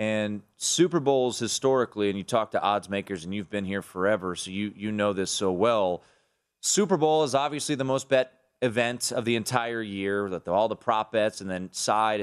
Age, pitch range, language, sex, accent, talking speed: 30-49, 115-150 Hz, English, male, American, 205 wpm